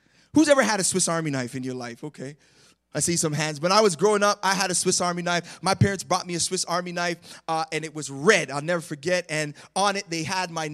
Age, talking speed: 30-49, 270 wpm